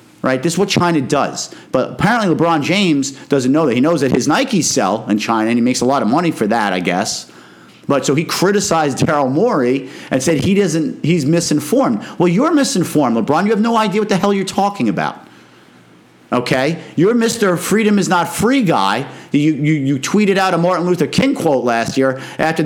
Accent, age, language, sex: American, 50-69, English, male